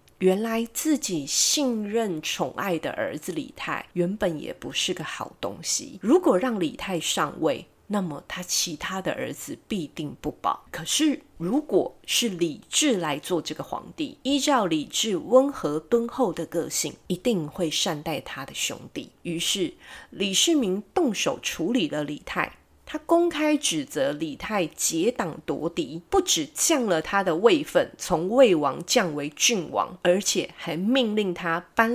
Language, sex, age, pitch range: Chinese, female, 30-49, 170-275 Hz